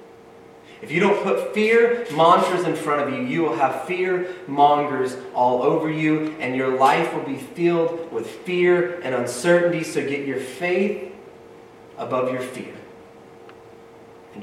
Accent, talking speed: American, 150 wpm